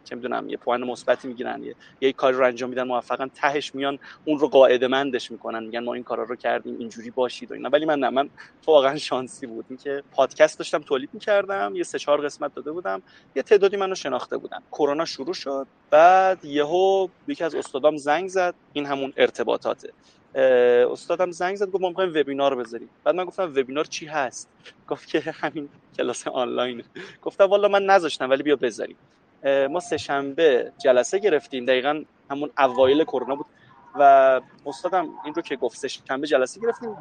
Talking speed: 180 wpm